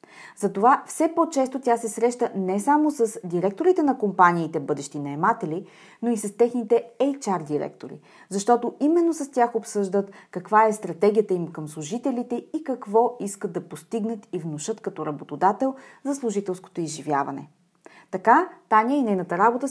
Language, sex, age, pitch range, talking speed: Bulgarian, female, 30-49, 190-260 Hz, 145 wpm